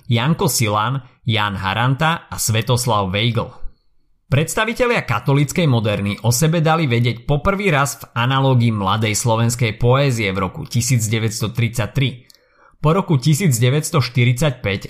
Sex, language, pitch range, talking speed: male, Slovak, 115-145 Hz, 110 wpm